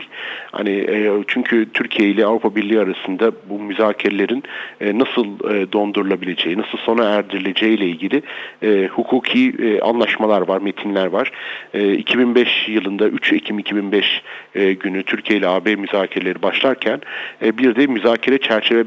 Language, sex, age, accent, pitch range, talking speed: Turkish, male, 40-59, native, 105-130 Hz, 115 wpm